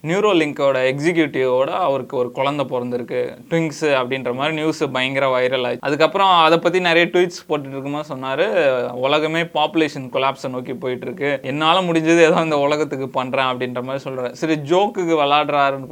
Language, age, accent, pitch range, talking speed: Tamil, 20-39, native, 130-160 Hz, 145 wpm